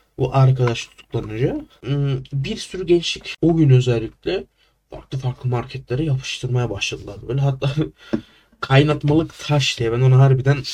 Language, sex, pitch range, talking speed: Turkish, male, 125-155 Hz, 125 wpm